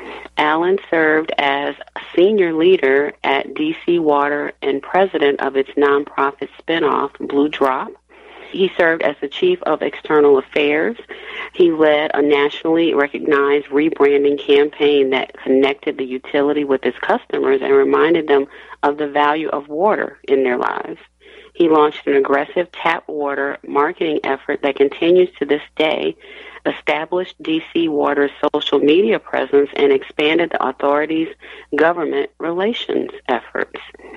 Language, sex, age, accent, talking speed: English, female, 40-59, American, 130 wpm